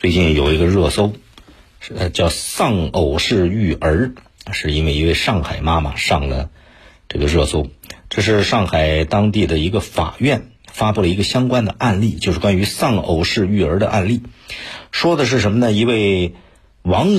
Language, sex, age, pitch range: Chinese, male, 50-69, 80-115 Hz